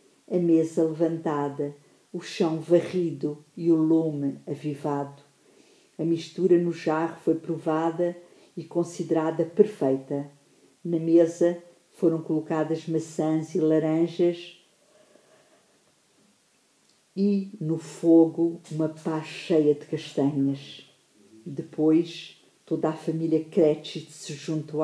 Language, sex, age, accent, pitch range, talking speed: English, female, 50-69, Brazilian, 150-170 Hz, 100 wpm